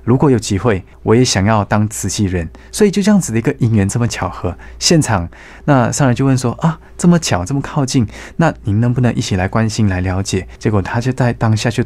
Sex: male